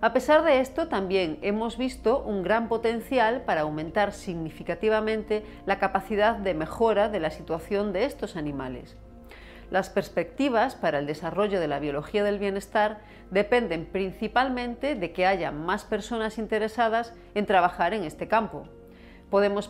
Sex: female